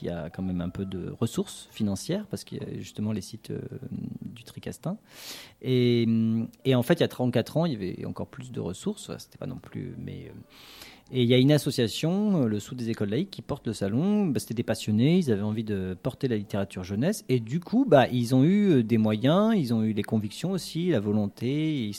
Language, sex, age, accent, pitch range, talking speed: French, male, 40-59, French, 110-140 Hz, 230 wpm